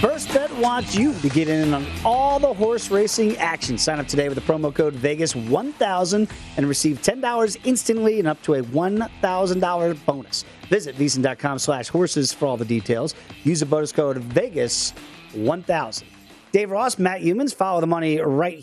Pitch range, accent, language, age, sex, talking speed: 145-185 Hz, American, English, 40-59, male, 170 wpm